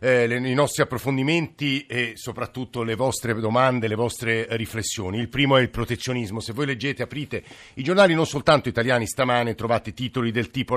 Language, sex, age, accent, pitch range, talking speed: Italian, male, 50-69, native, 110-145 Hz, 180 wpm